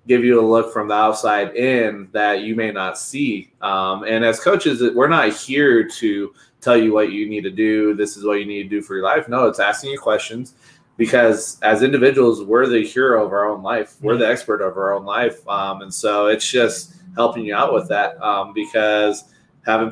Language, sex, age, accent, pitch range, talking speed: English, male, 20-39, American, 105-120 Hz, 220 wpm